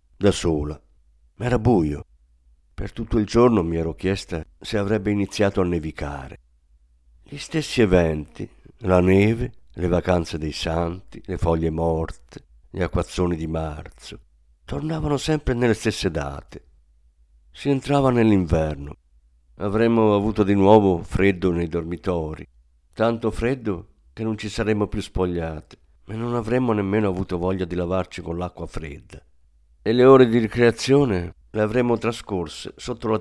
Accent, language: native, Italian